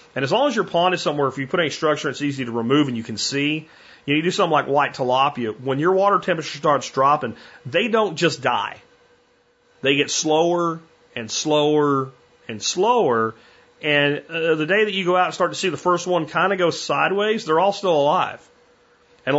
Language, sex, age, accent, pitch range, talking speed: English, male, 40-59, American, 135-175 Hz, 215 wpm